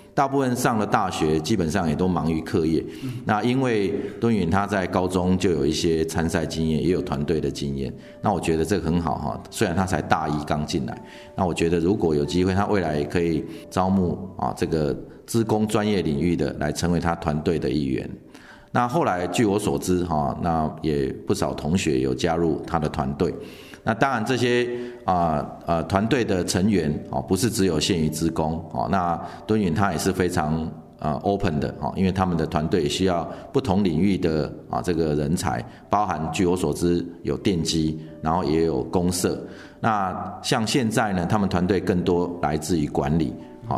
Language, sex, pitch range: Chinese, male, 80-100 Hz